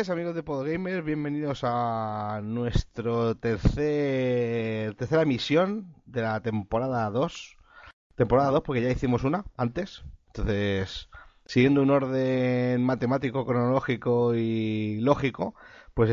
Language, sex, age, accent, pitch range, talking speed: Spanish, male, 30-49, Spanish, 110-135 Hz, 110 wpm